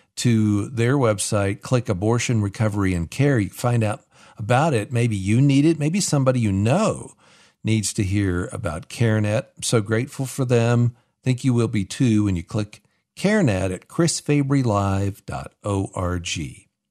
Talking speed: 150 wpm